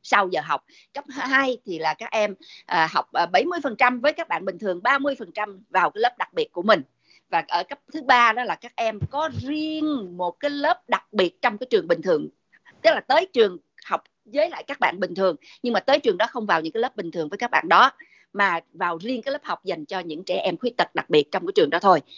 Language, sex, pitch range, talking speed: Vietnamese, female, 185-285 Hz, 250 wpm